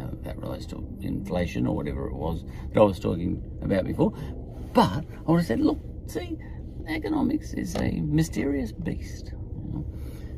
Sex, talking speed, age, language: male, 160 wpm, 50-69, English